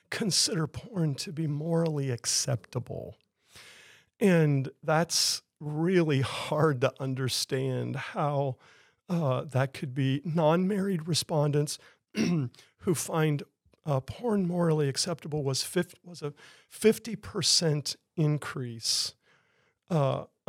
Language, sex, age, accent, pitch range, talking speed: English, male, 50-69, American, 135-175 Hz, 95 wpm